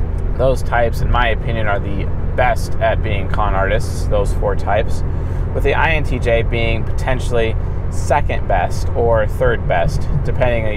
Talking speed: 145 wpm